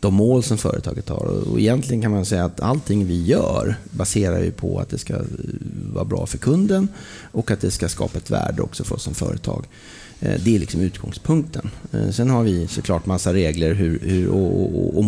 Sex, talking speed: male, 185 wpm